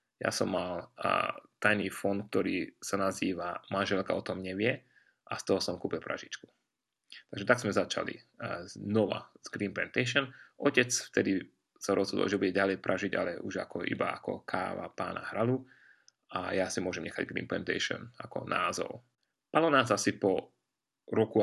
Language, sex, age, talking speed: Slovak, male, 30-49, 160 wpm